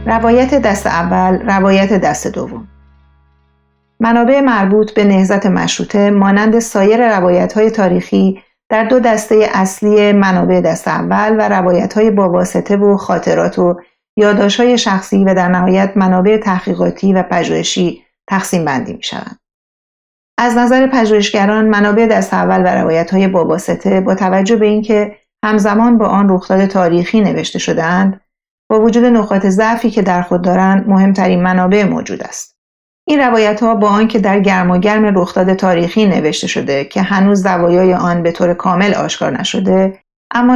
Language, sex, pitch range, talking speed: Persian, female, 180-215 Hz, 145 wpm